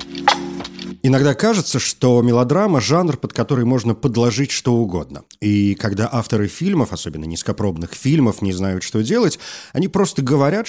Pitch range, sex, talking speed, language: 100-145 Hz, male, 145 wpm, Russian